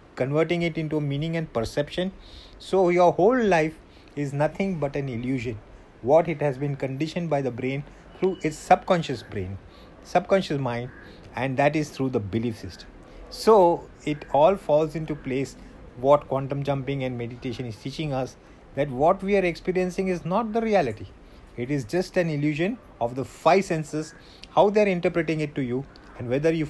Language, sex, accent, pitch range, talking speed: English, male, Indian, 125-165 Hz, 175 wpm